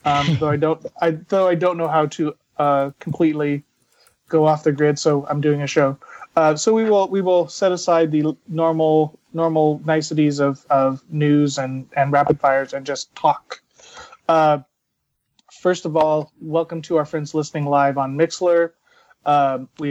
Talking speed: 180 wpm